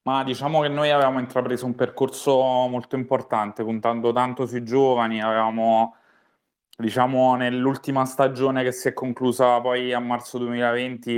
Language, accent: Italian, native